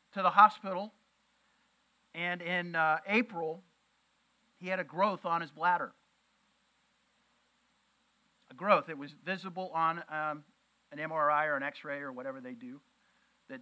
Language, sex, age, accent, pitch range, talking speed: English, male, 50-69, American, 180-255 Hz, 135 wpm